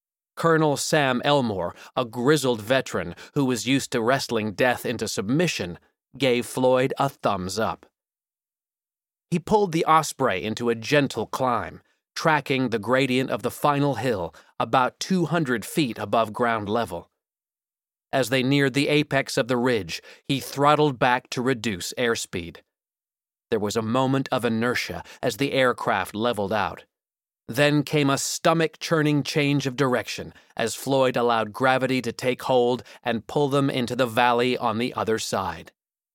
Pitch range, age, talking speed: 120-145 Hz, 30-49, 150 wpm